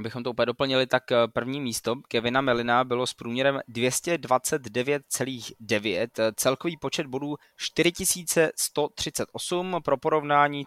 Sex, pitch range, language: male, 115-140 Hz, Czech